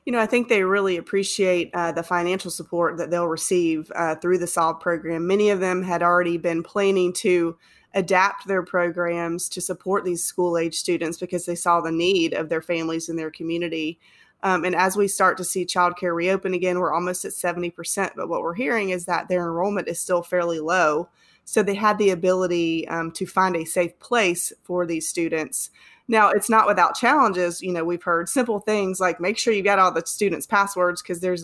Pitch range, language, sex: 170-195 Hz, English, female